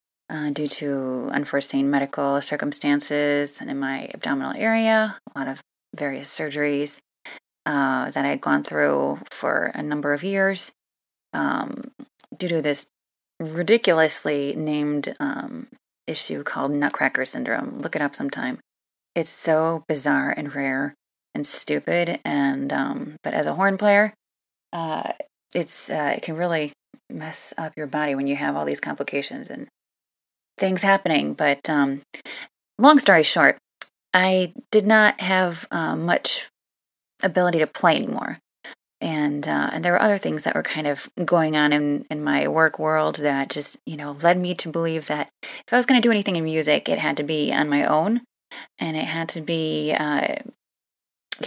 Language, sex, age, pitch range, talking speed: English, female, 20-39, 145-180 Hz, 160 wpm